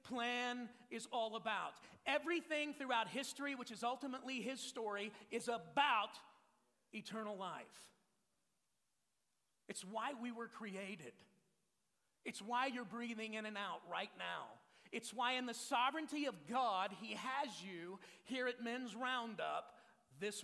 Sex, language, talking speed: male, English, 130 wpm